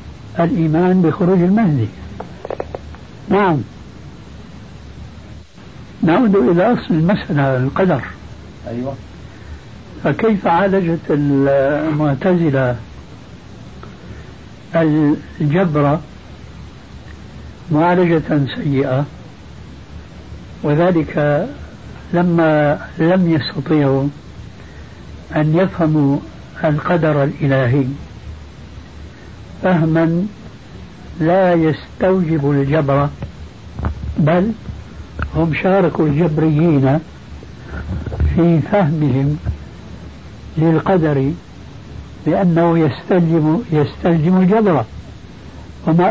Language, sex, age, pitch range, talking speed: Arabic, male, 60-79, 130-175 Hz, 50 wpm